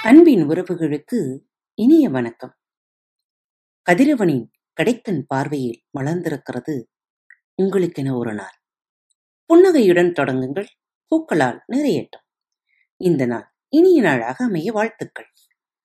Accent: native